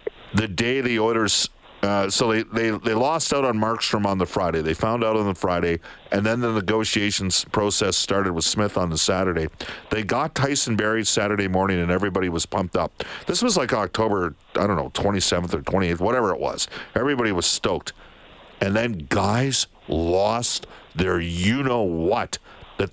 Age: 50-69